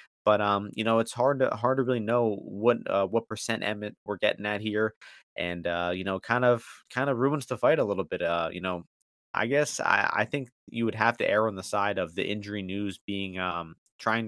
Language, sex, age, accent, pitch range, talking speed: English, male, 20-39, American, 95-115 Hz, 240 wpm